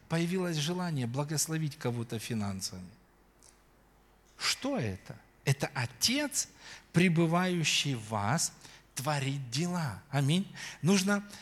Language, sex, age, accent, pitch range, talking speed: Russian, male, 40-59, native, 115-170 Hz, 85 wpm